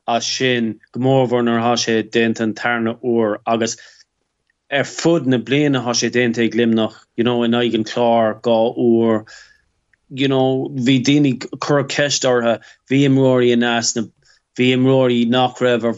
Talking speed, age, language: 130 wpm, 30-49, English